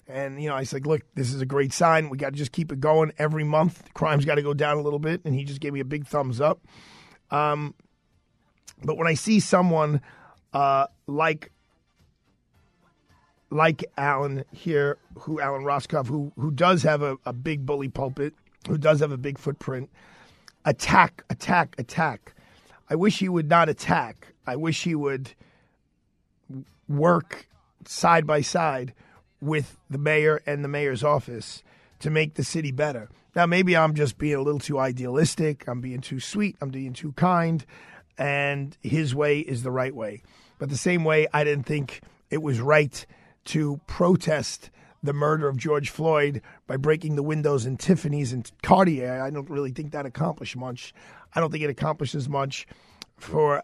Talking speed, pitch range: 180 wpm, 140-155 Hz